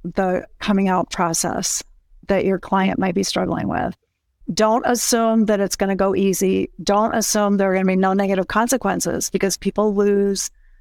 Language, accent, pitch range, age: English, American, 190-220 Hz, 50-69